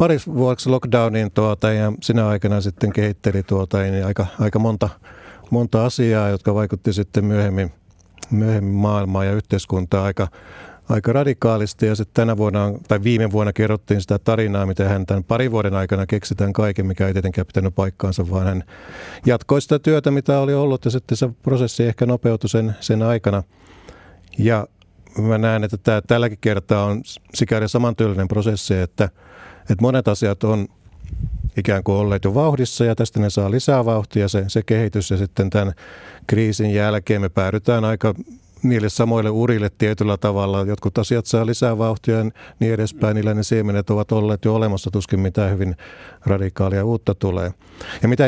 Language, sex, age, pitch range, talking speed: Finnish, male, 50-69, 100-115 Hz, 160 wpm